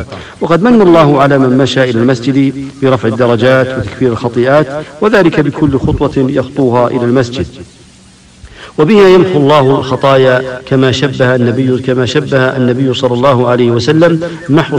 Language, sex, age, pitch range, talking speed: English, male, 50-69, 130-145 Hz, 135 wpm